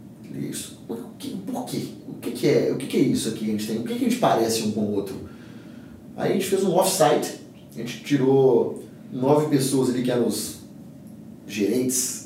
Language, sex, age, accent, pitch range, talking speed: Portuguese, male, 30-49, Brazilian, 110-140 Hz, 210 wpm